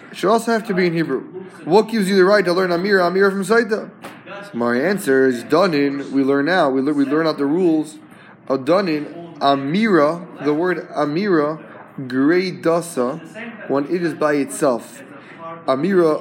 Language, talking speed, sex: English, 170 wpm, male